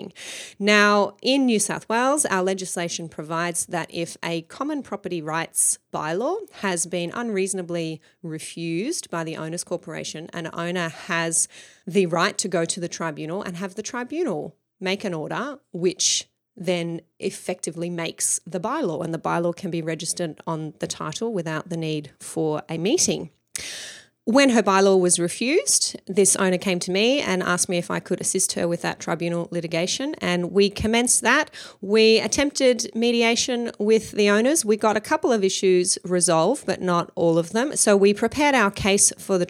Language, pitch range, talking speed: English, 170-210 Hz, 170 wpm